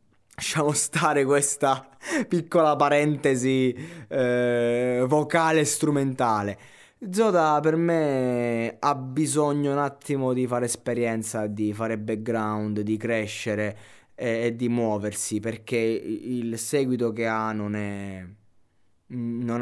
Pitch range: 110-125 Hz